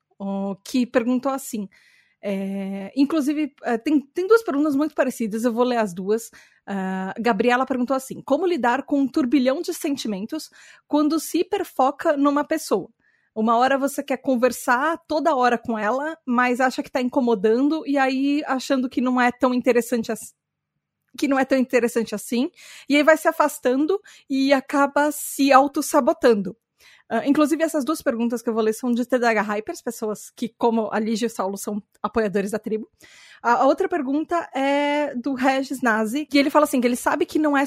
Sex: female